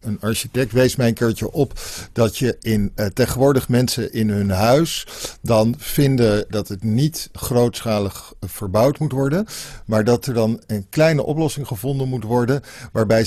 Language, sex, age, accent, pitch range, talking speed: English, male, 50-69, Dutch, 105-140 Hz, 165 wpm